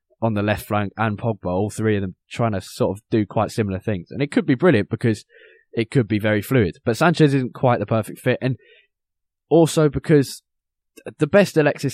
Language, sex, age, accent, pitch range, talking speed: English, male, 10-29, British, 95-125 Hz, 210 wpm